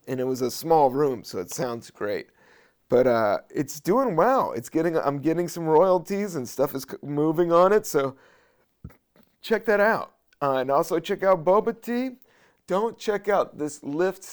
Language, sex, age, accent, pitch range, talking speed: English, male, 30-49, American, 130-185 Hz, 180 wpm